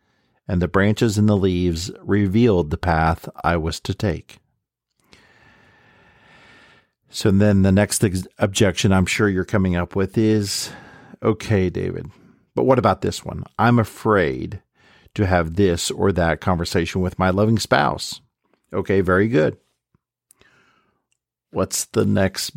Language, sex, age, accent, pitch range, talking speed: English, male, 50-69, American, 90-105 Hz, 135 wpm